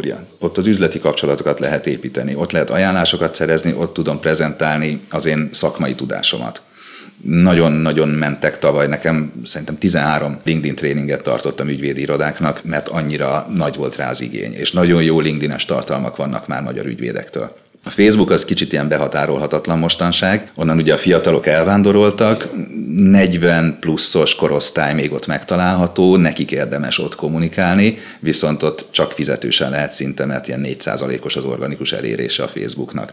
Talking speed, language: 145 wpm, Hungarian